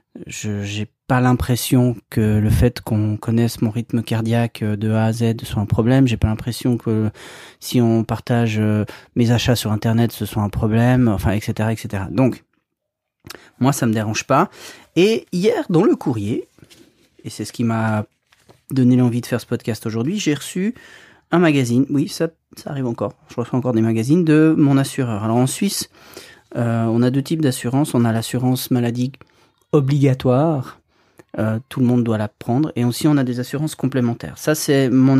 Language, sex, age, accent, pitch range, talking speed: French, male, 30-49, French, 115-140 Hz, 185 wpm